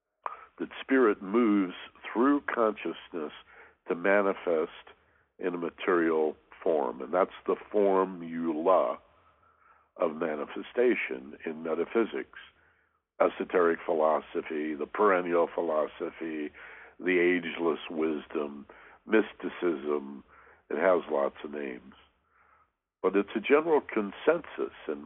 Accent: American